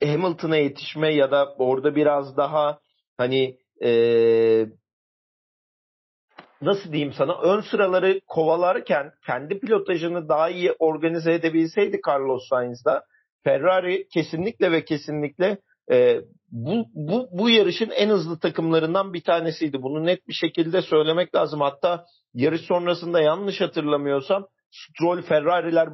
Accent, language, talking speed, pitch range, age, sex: native, Turkish, 115 wpm, 145-180 Hz, 40-59, male